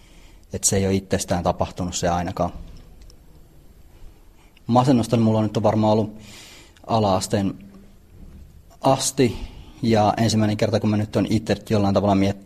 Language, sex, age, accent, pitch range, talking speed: Finnish, male, 30-49, native, 90-110 Hz, 130 wpm